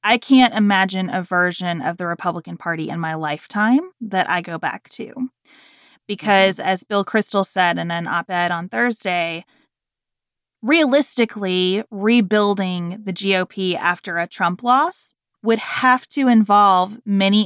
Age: 20-39